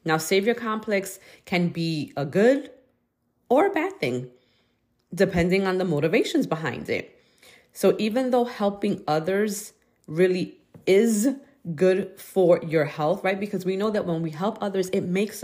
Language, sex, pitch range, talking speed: English, female, 160-200 Hz, 150 wpm